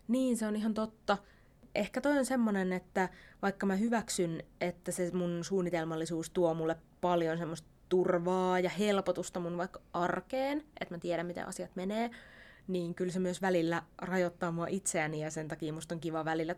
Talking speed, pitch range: 175 wpm, 170-210 Hz